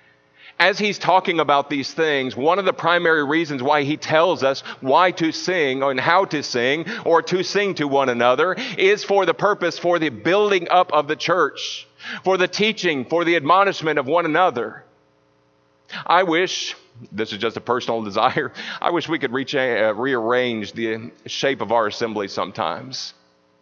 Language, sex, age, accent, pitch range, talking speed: English, male, 40-59, American, 115-190 Hz, 170 wpm